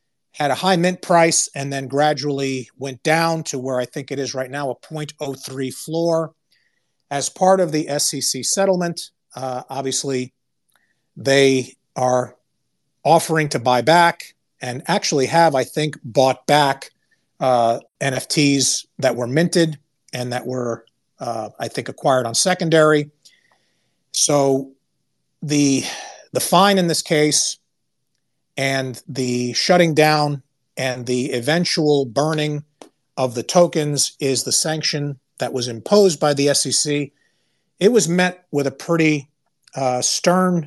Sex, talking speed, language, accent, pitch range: male, 135 wpm, English, American, 130-160 Hz